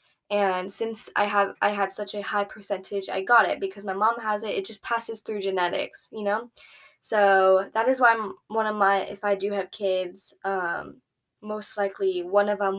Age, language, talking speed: 10-29, English, 205 wpm